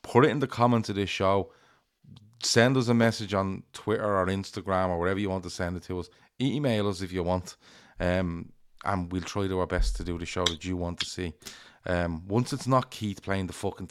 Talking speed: 235 wpm